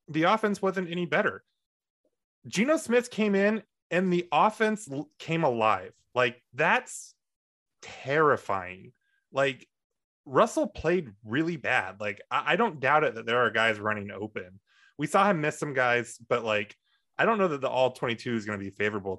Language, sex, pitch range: English, male, 105-160 Hz